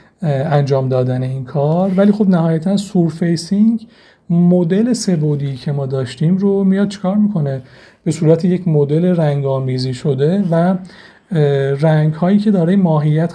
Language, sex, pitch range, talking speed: Persian, male, 145-175 Hz, 135 wpm